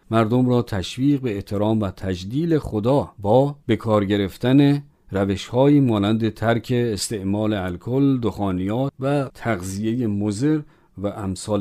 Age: 50-69